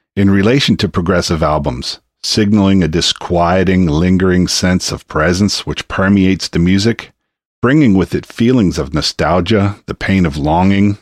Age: 50-69